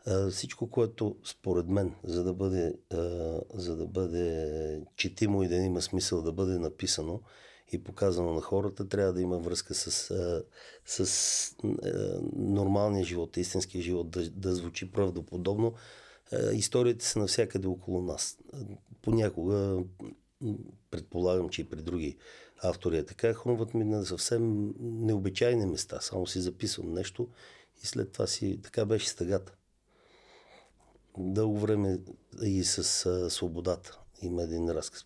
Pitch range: 90-105 Hz